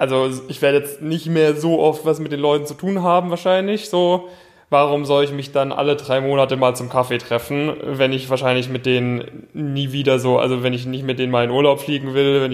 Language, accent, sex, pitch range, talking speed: German, German, male, 125-145 Hz, 235 wpm